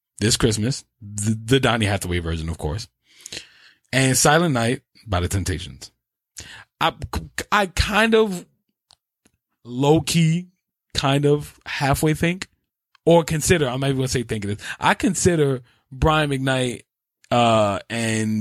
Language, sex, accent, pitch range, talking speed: English, male, American, 110-150 Hz, 130 wpm